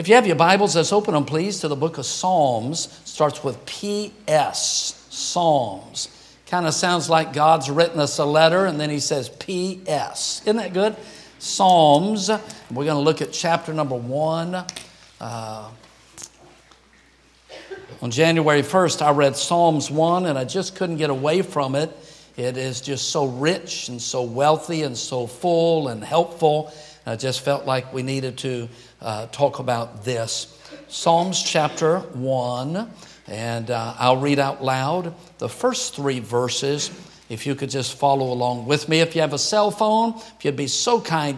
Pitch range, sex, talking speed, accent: 135-175 Hz, male, 170 wpm, American